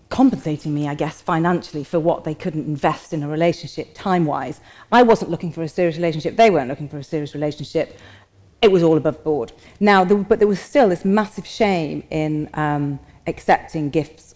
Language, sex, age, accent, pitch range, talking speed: English, female, 40-59, British, 160-210 Hz, 190 wpm